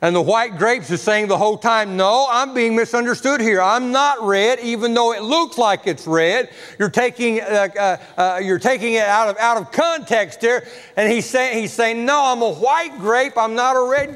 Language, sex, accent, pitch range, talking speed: English, male, American, 155-230 Hz, 220 wpm